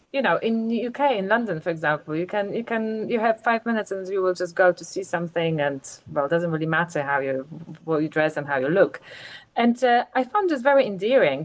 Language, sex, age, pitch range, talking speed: English, female, 30-49, 175-230 Hz, 245 wpm